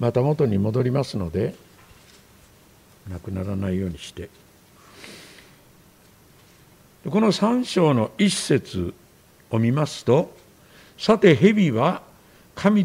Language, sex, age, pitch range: Japanese, male, 60-79, 130-195 Hz